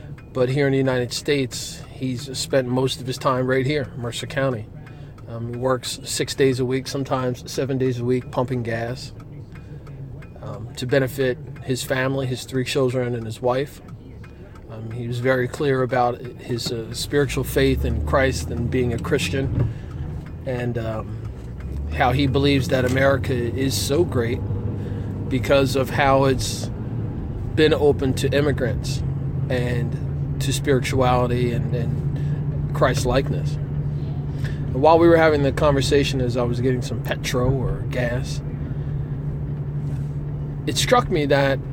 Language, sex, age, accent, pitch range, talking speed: English, male, 40-59, American, 125-140 Hz, 140 wpm